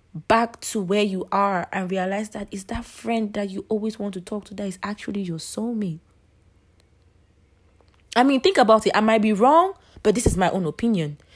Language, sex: English, female